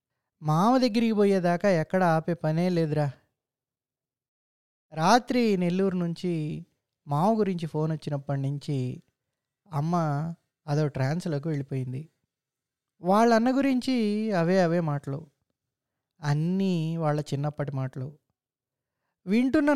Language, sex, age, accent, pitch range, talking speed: Telugu, male, 20-39, native, 150-215 Hz, 90 wpm